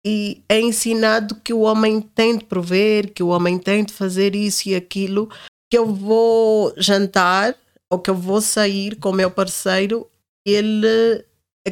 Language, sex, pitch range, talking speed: Portuguese, female, 175-225 Hz, 170 wpm